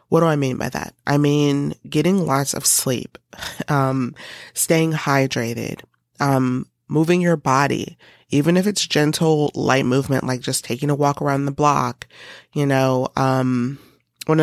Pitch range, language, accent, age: 130-150 Hz, English, American, 30-49